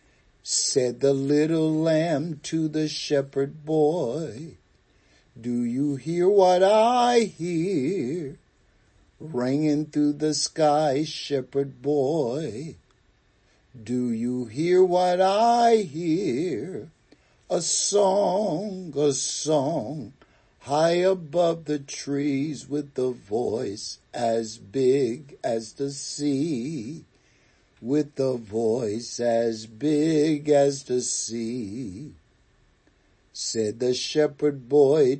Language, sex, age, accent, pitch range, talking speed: English, male, 60-79, American, 125-165 Hz, 90 wpm